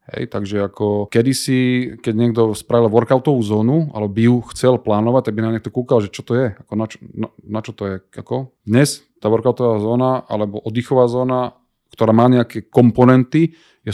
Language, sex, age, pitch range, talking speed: Slovak, male, 20-39, 110-125 Hz, 190 wpm